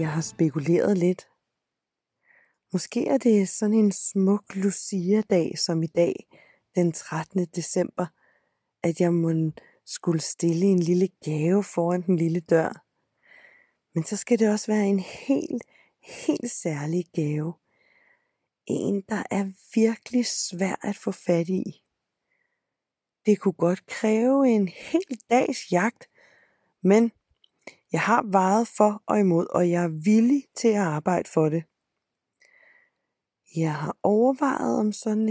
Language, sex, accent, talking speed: Danish, female, native, 135 wpm